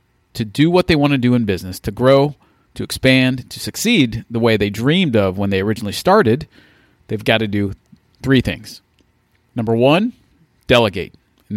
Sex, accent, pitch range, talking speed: male, American, 110-145 Hz, 175 wpm